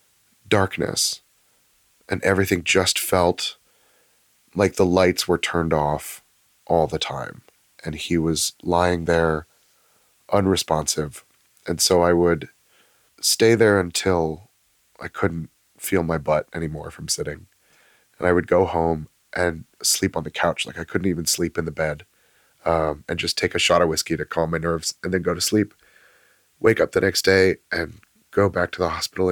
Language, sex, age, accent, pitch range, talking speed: English, male, 30-49, American, 85-100 Hz, 165 wpm